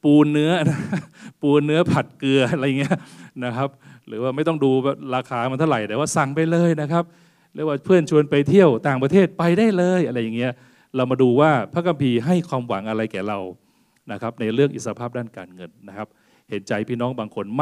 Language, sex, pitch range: Thai, male, 115-155 Hz